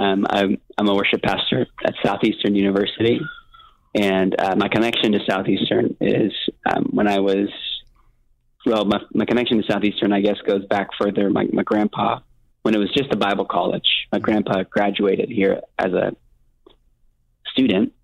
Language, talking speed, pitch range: English, 160 wpm, 95-105 Hz